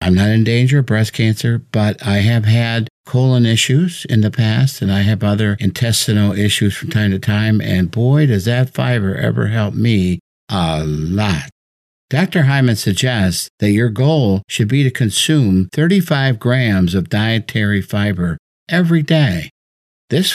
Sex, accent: male, American